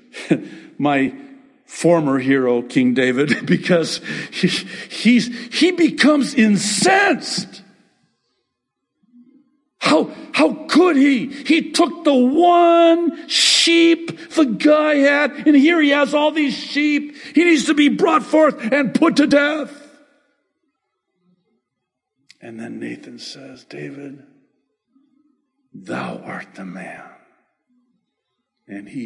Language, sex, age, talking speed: English, male, 60-79, 105 wpm